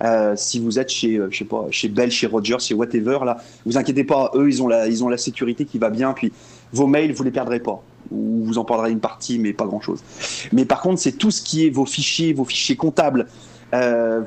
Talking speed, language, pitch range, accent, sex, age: 250 wpm, French, 115-160 Hz, French, male, 30-49